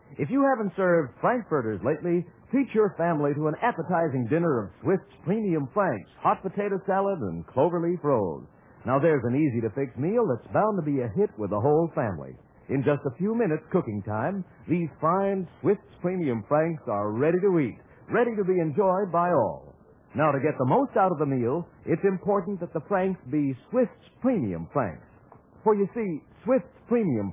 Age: 60-79